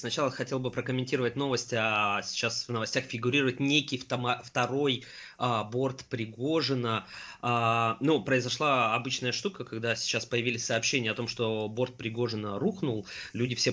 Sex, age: male, 20-39